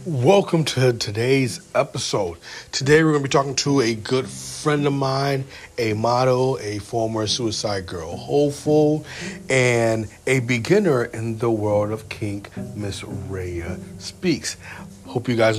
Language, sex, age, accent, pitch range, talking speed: English, male, 40-59, American, 115-175 Hz, 140 wpm